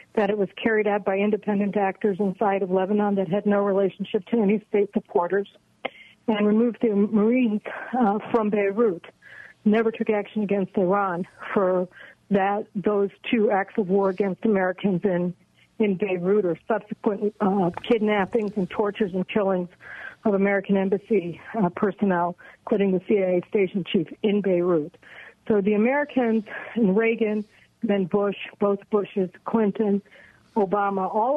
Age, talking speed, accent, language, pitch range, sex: 60-79, 140 wpm, American, English, 195-225 Hz, female